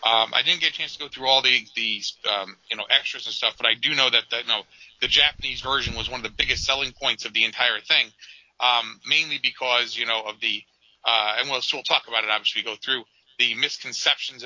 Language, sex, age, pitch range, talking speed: English, male, 40-59, 120-150 Hz, 255 wpm